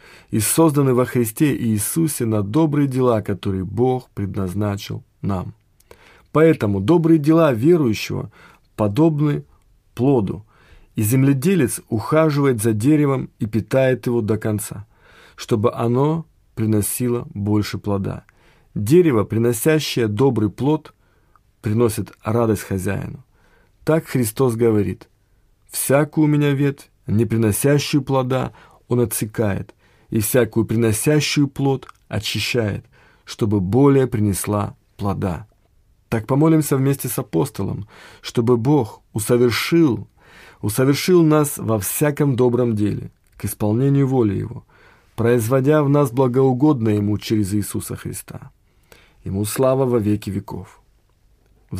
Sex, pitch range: male, 105-140 Hz